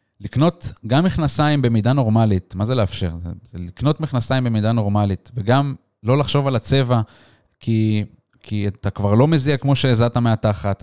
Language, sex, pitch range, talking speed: Hebrew, male, 105-140 Hz, 155 wpm